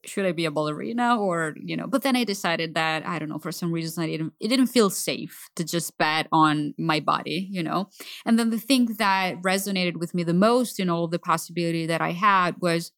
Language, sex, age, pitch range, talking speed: English, female, 30-49, 165-220 Hz, 235 wpm